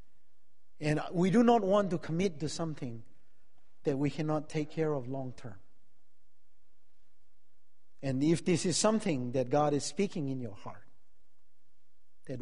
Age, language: 50-69, English